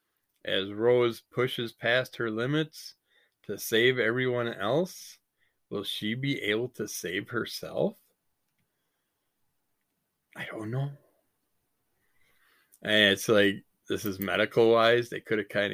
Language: English